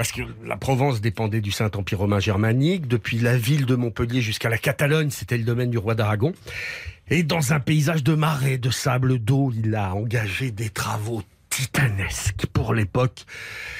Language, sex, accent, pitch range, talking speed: French, male, French, 115-150 Hz, 175 wpm